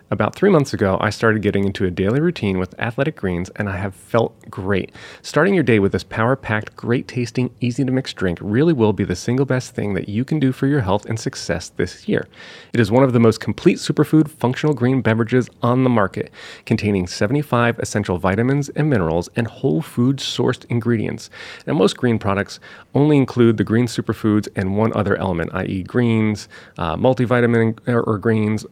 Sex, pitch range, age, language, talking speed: male, 100-130 Hz, 30-49, English, 185 wpm